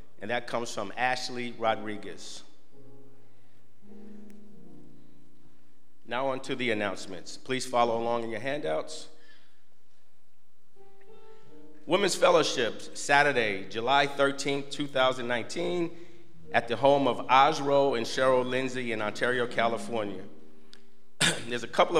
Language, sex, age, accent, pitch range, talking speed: English, male, 50-69, American, 115-140 Hz, 100 wpm